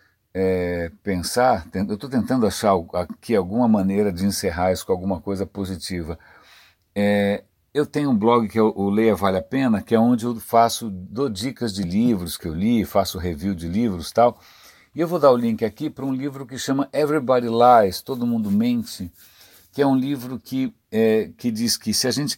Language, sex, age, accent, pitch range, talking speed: Portuguese, male, 60-79, Brazilian, 95-130 Hz, 200 wpm